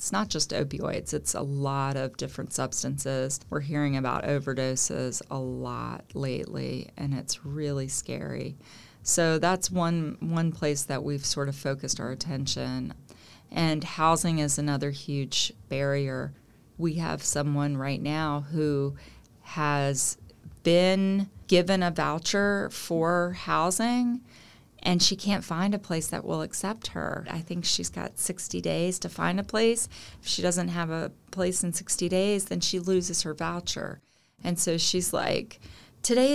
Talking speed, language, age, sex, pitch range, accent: 150 wpm, English, 30-49, female, 140-185 Hz, American